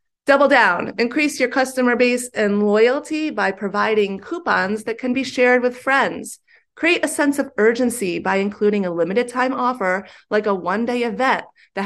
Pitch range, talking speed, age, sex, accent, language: 205-255 Hz, 165 wpm, 30-49, female, American, English